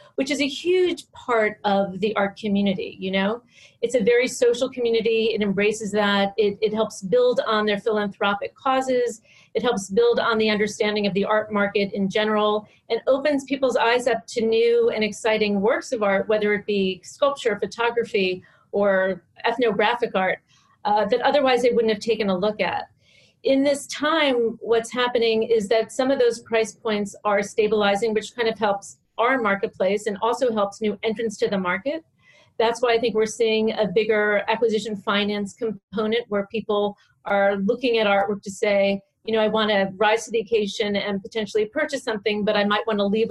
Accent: American